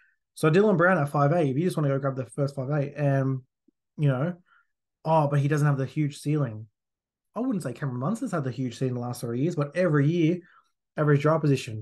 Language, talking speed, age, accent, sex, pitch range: English, 235 wpm, 20-39, Australian, male, 135-155 Hz